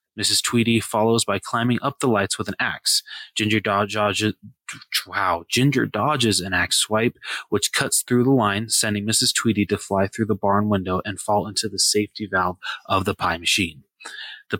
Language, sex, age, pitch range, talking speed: English, male, 20-39, 105-120 Hz, 175 wpm